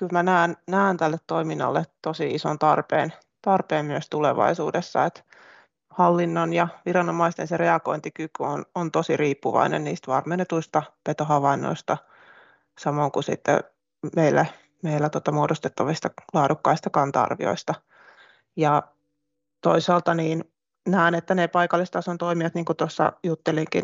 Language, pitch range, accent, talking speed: Finnish, 160-175 Hz, native, 110 wpm